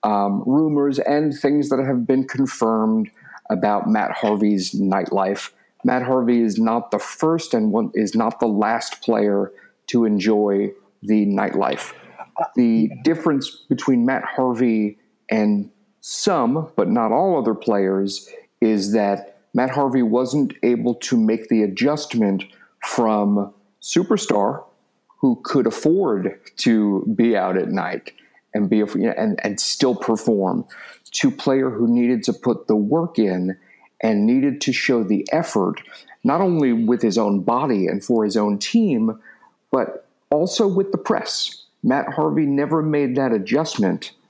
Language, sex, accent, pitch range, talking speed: English, male, American, 105-150 Hz, 145 wpm